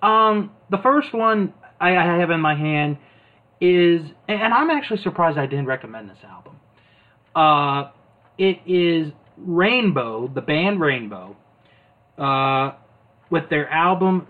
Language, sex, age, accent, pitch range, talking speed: English, male, 30-49, American, 135-180 Hz, 125 wpm